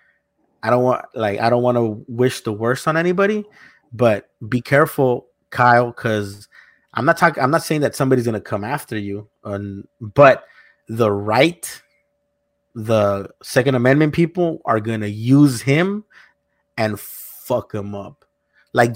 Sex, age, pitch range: male, 30-49, 110-140 Hz